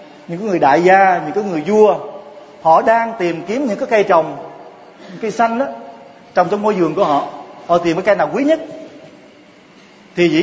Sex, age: male, 30-49